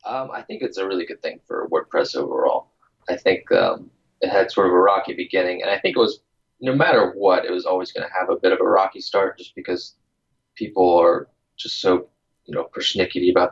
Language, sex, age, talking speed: English, male, 20-39, 225 wpm